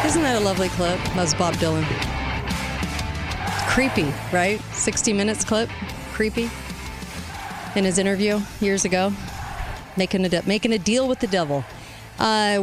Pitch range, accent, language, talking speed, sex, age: 160-210 Hz, American, English, 145 wpm, female, 40-59